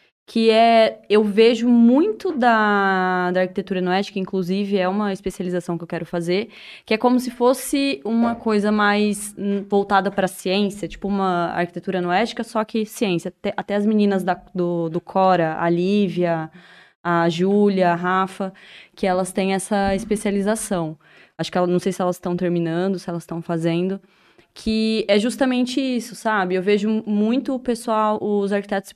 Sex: female